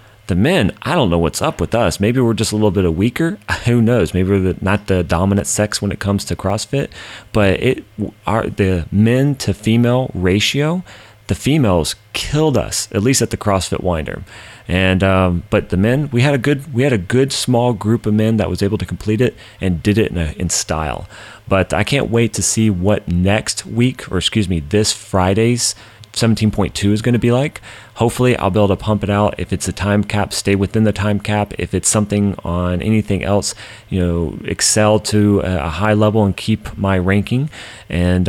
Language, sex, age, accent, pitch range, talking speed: English, male, 30-49, American, 95-115 Hz, 210 wpm